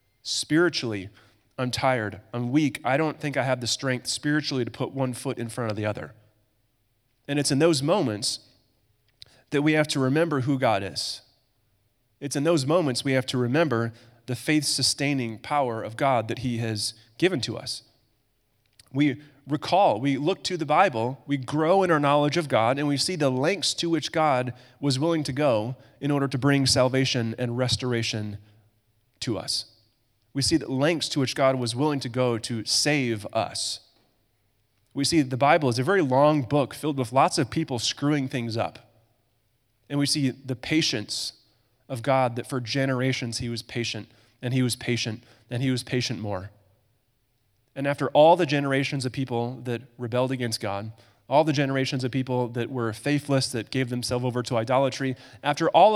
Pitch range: 115-140 Hz